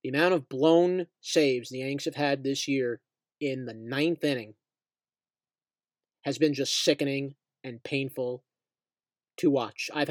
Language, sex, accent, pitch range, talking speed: English, male, American, 140-180 Hz, 140 wpm